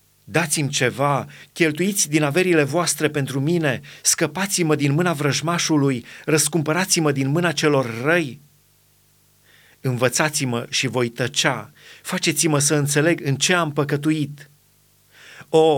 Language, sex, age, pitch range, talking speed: Romanian, male, 30-49, 140-170 Hz, 110 wpm